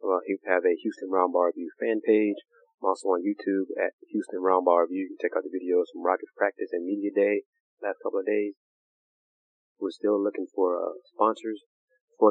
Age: 30-49